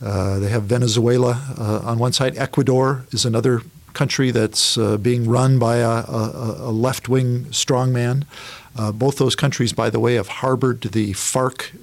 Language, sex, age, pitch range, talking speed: English, male, 50-69, 115-135 Hz, 170 wpm